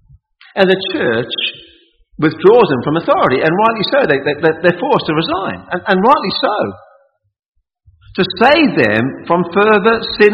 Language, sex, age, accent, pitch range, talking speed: English, male, 50-69, British, 130-205 Hz, 150 wpm